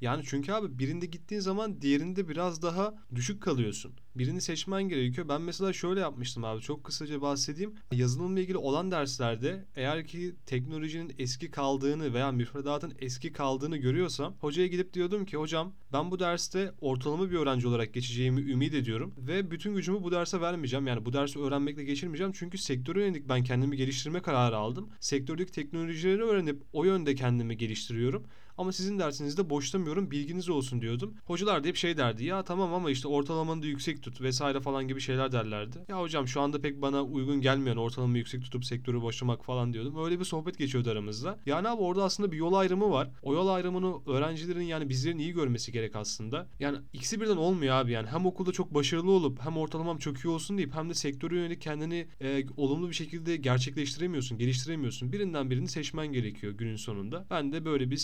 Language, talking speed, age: Turkish, 185 wpm, 30-49